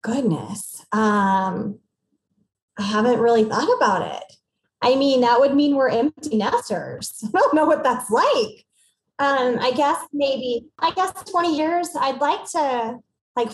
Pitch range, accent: 205-250 Hz, American